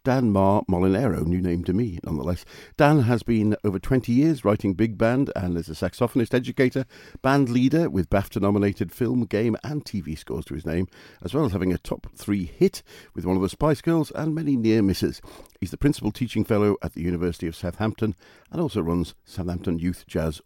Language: English